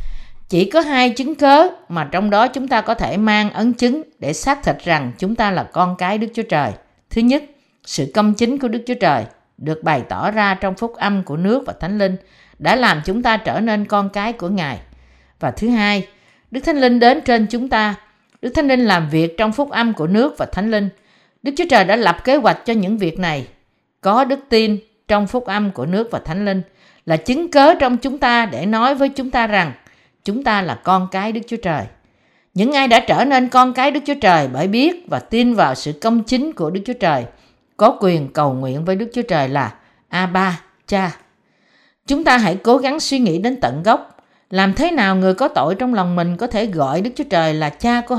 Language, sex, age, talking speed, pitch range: Vietnamese, female, 50-69, 230 wpm, 175-245 Hz